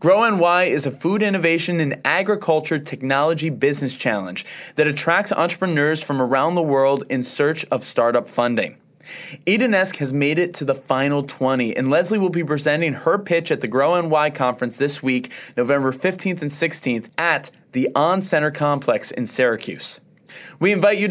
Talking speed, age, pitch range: 160 wpm, 20-39, 130-165 Hz